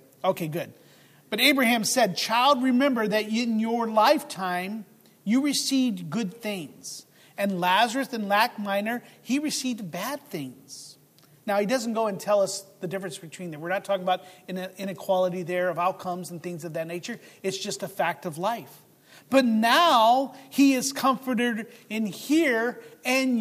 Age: 40-59